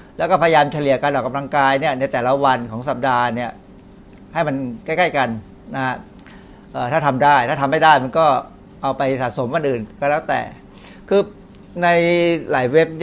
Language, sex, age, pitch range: Thai, male, 60-79, 130-160 Hz